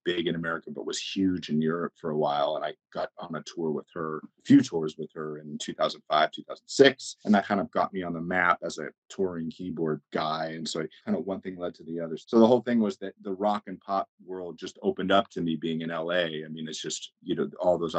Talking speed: 265 wpm